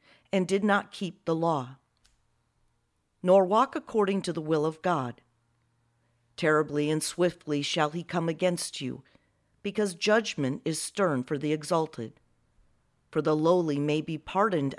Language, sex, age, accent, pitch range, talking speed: English, female, 40-59, American, 130-185 Hz, 140 wpm